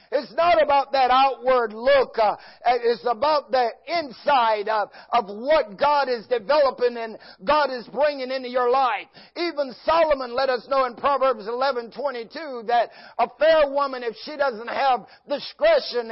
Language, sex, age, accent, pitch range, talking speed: English, male, 50-69, American, 235-290 Hz, 160 wpm